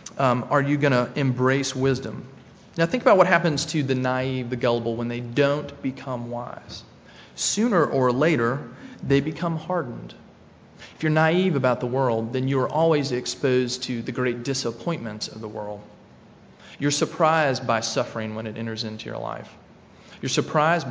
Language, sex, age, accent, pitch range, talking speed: English, male, 30-49, American, 120-155 Hz, 165 wpm